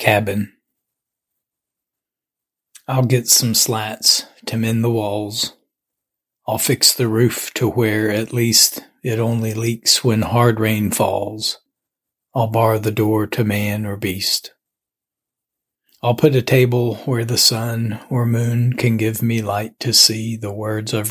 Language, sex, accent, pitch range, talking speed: English, male, American, 105-120 Hz, 140 wpm